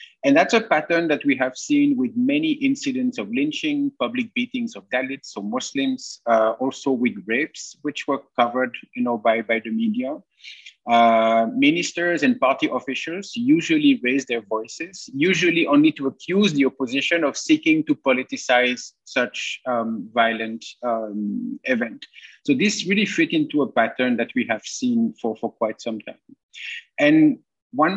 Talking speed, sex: 160 wpm, male